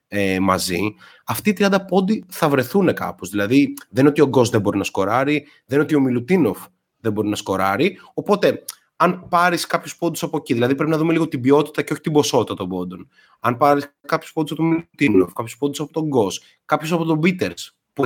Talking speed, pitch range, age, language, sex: 215 wpm, 110-160 Hz, 30-49, Greek, male